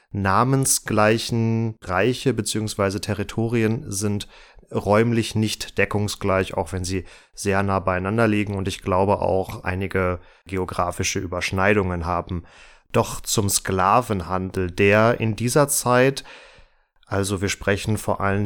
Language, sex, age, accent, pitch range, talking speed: German, male, 30-49, German, 100-125 Hz, 115 wpm